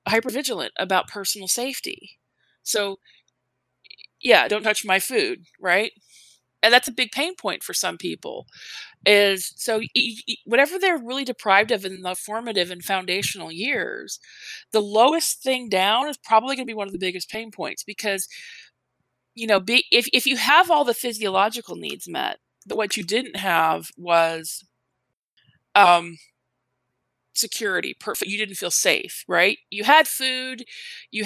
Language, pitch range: English, 195-250 Hz